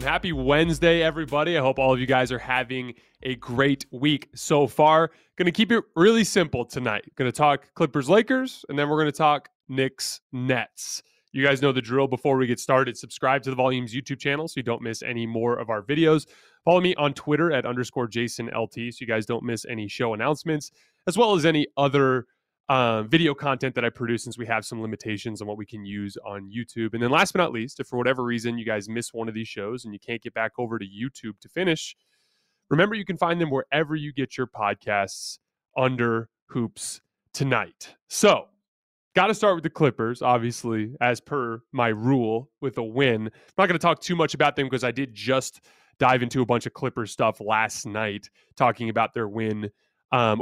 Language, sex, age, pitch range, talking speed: English, male, 20-39, 115-150 Hz, 210 wpm